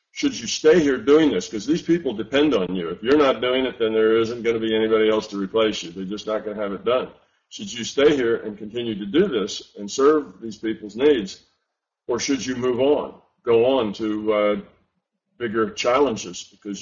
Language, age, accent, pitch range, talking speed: English, 50-69, American, 105-130 Hz, 220 wpm